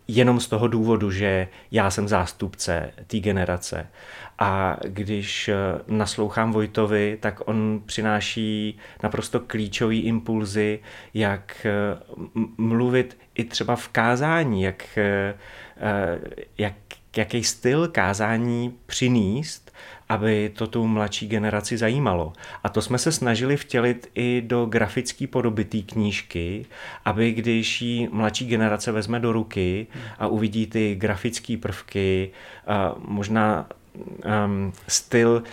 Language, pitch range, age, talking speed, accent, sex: Czech, 105-120 Hz, 30-49, 110 wpm, native, male